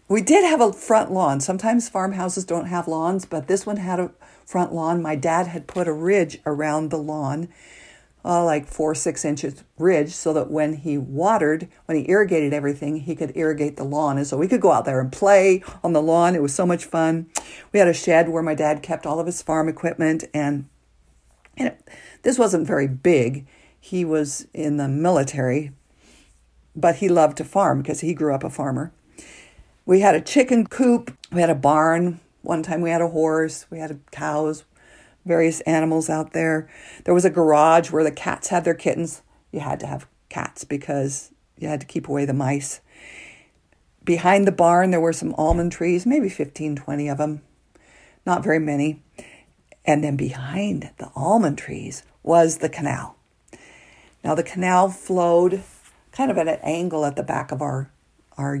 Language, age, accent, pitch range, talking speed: English, 50-69, American, 150-175 Hz, 190 wpm